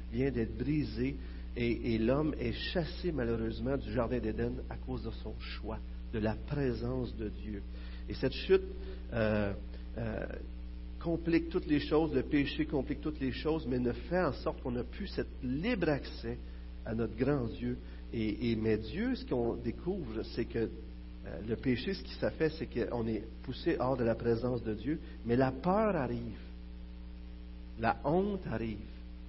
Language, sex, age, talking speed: French, male, 50-69, 175 wpm